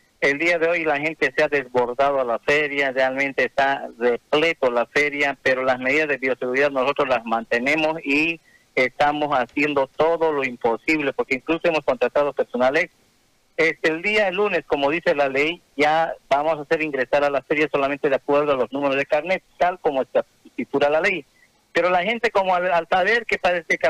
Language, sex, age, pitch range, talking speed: Spanish, male, 50-69, 145-195 Hz, 195 wpm